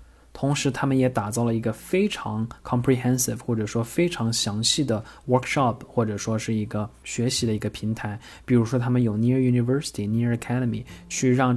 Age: 20-39